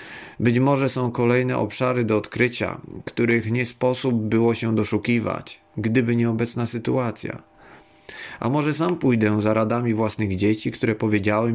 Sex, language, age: male, Polish, 40-59